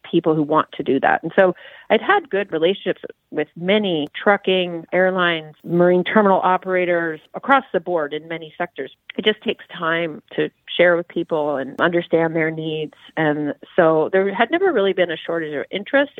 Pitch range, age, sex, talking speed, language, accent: 150-185 Hz, 30-49, female, 180 wpm, English, American